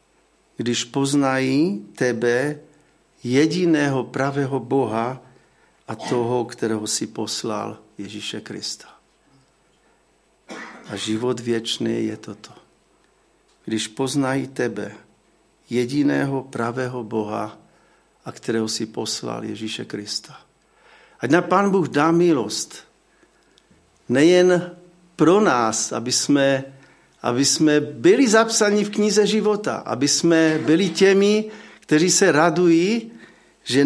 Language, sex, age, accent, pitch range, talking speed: Czech, male, 50-69, native, 125-180 Hz, 100 wpm